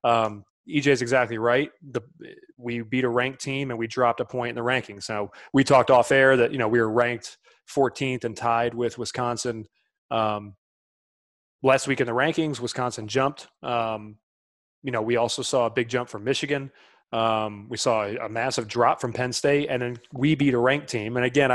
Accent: American